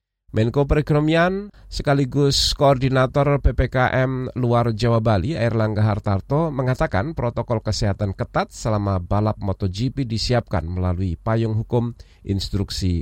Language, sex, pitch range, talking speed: Indonesian, male, 95-135 Hz, 100 wpm